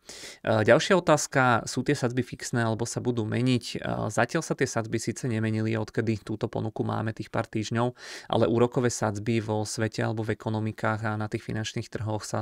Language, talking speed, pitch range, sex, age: Czech, 180 wpm, 110-120 Hz, male, 20-39